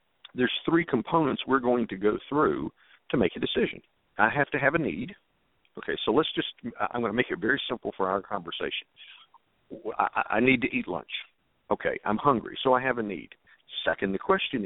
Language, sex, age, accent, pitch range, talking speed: English, male, 50-69, American, 110-150 Hz, 200 wpm